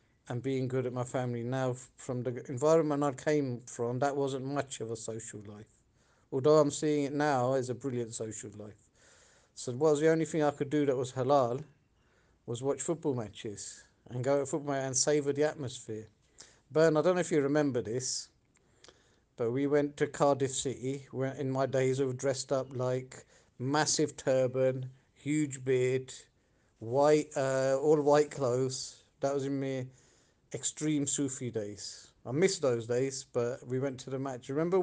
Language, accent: English, British